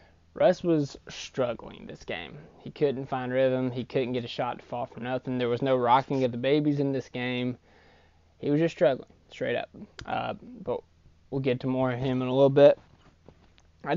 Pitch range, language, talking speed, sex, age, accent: 115-135 Hz, English, 200 wpm, male, 20-39, American